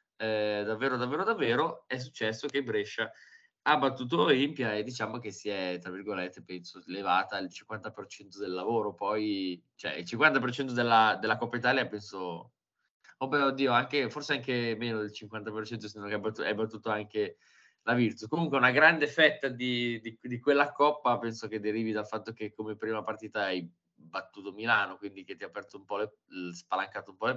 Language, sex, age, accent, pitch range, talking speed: Italian, male, 20-39, native, 105-130 Hz, 185 wpm